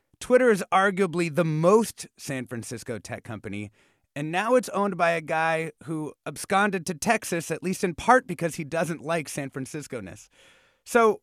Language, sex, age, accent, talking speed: English, male, 30-49, American, 165 wpm